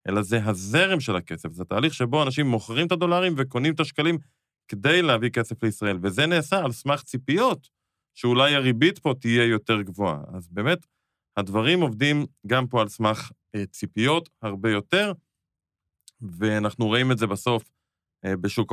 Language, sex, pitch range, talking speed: Hebrew, male, 110-150 Hz, 155 wpm